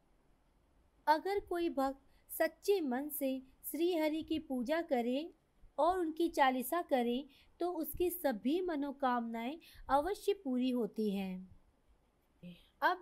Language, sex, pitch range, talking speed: Hindi, female, 245-315 Hz, 110 wpm